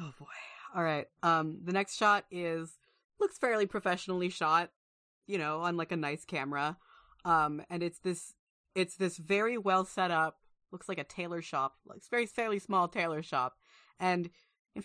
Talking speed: 175 wpm